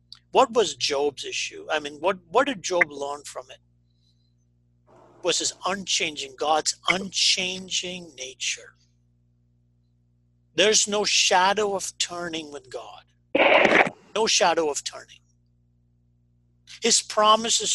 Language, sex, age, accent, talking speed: English, male, 50-69, American, 110 wpm